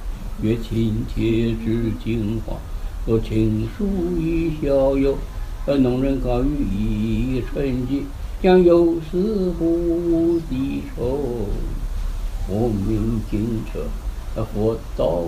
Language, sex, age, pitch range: Chinese, male, 60-79, 110-170 Hz